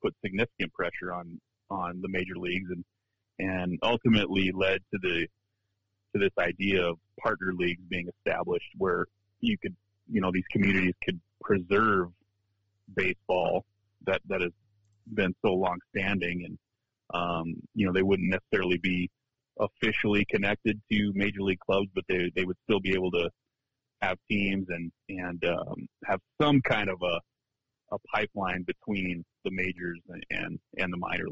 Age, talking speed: 30-49, 155 wpm